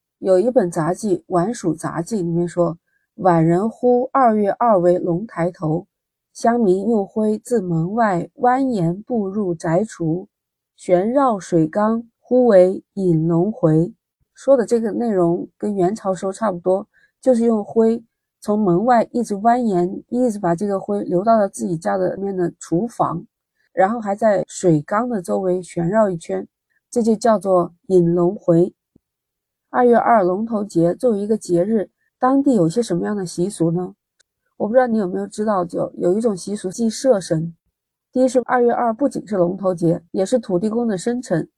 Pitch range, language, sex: 175-225 Hz, Chinese, female